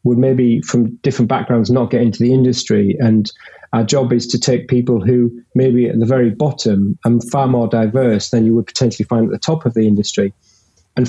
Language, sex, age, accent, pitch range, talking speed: English, male, 30-49, British, 110-130 Hz, 210 wpm